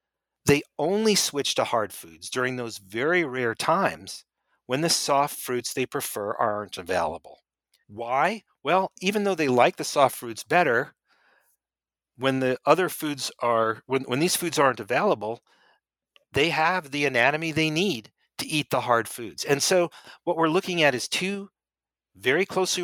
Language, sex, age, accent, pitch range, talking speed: English, male, 40-59, American, 115-165 Hz, 150 wpm